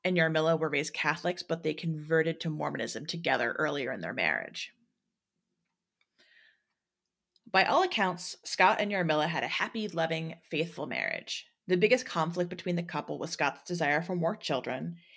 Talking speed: 155 wpm